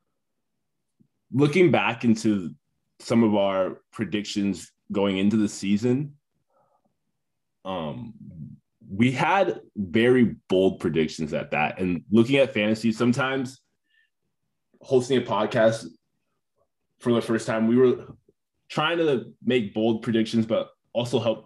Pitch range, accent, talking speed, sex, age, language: 105-125 Hz, American, 115 wpm, male, 20-39, English